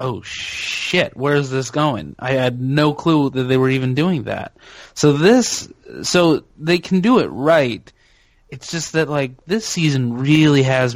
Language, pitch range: English, 120-155 Hz